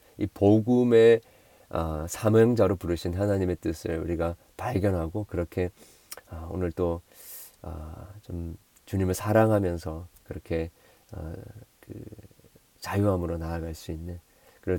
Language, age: Korean, 40-59